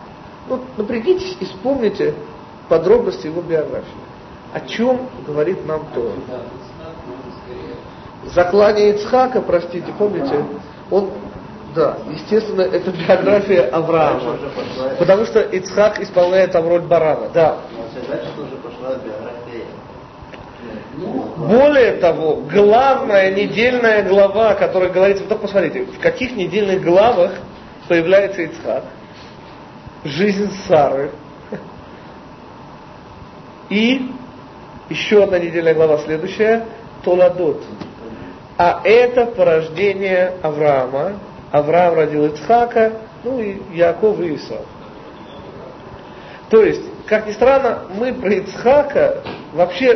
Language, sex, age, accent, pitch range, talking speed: Russian, male, 40-59, native, 175-230 Hz, 90 wpm